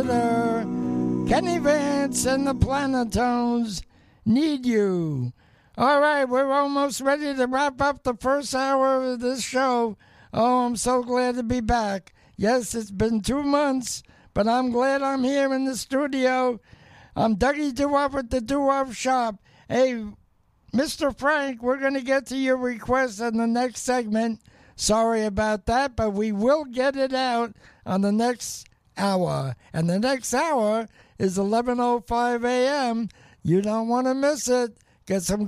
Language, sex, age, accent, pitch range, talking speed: English, male, 60-79, American, 225-265 Hz, 150 wpm